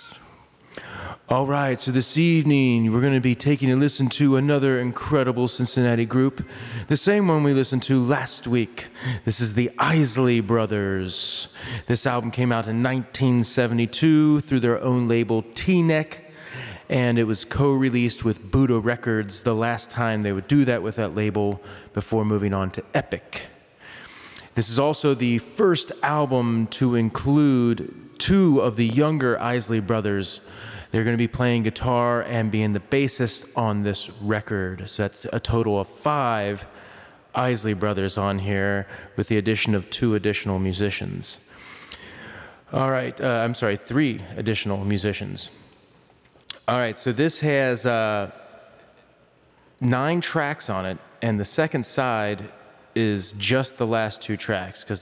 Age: 30-49